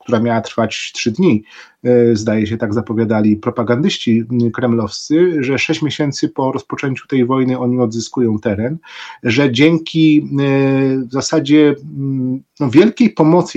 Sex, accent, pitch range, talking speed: male, native, 115-150 Hz, 120 wpm